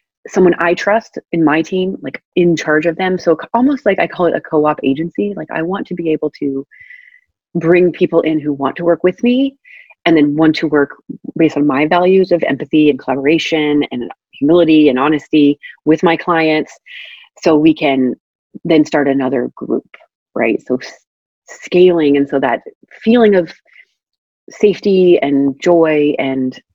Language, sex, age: English, female, 30-49